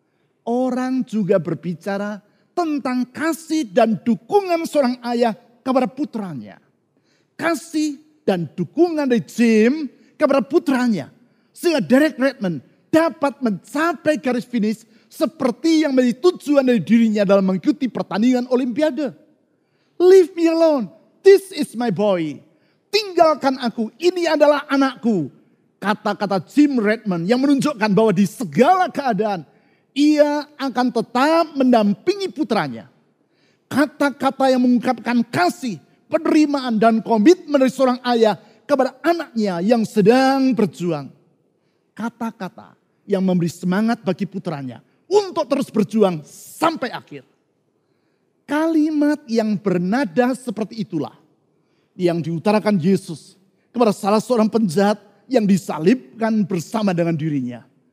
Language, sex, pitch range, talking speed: Indonesian, male, 205-285 Hz, 110 wpm